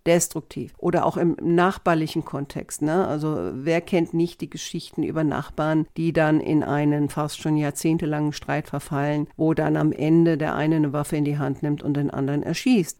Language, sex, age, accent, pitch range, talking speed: German, female, 50-69, German, 150-175 Hz, 185 wpm